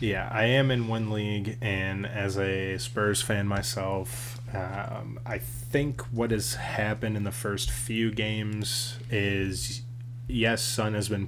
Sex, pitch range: male, 95-120 Hz